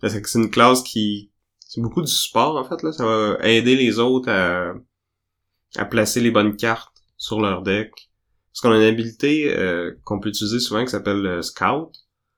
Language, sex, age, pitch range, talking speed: French, male, 20-39, 100-115 Hz, 190 wpm